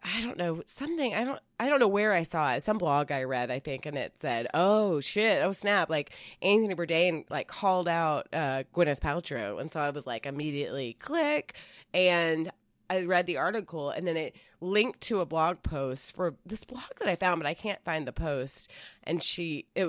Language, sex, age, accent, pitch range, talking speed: English, female, 20-39, American, 145-180 Hz, 210 wpm